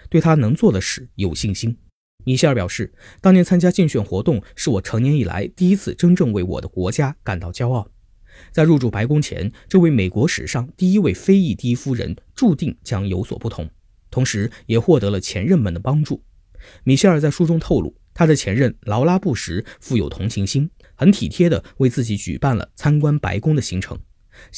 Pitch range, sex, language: 100-150 Hz, male, Chinese